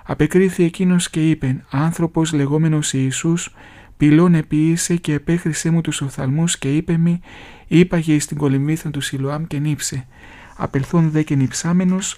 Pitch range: 135-165 Hz